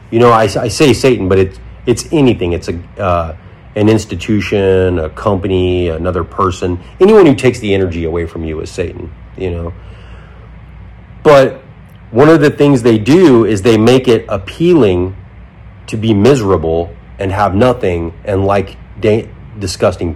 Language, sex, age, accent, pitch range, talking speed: English, male, 30-49, American, 95-120 Hz, 160 wpm